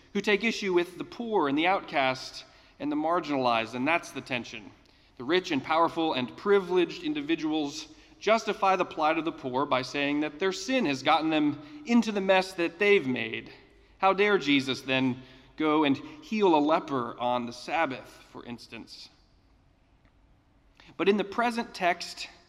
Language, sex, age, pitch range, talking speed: English, male, 40-59, 135-200 Hz, 165 wpm